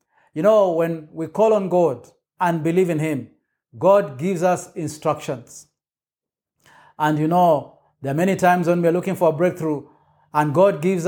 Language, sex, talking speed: English, male, 175 wpm